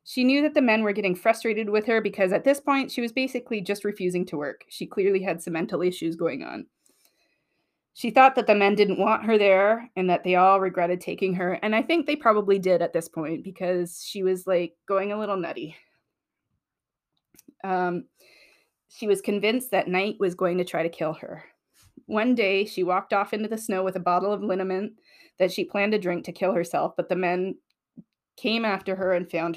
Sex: female